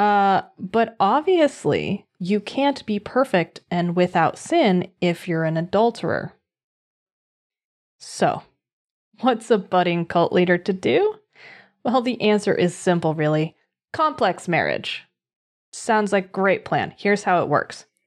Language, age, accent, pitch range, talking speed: English, 30-49, American, 170-210 Hz, 125 wpm